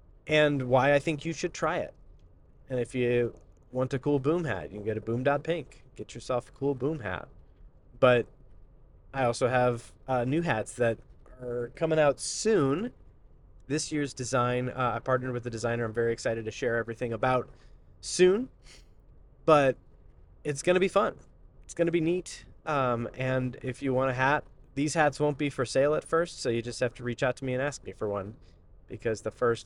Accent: American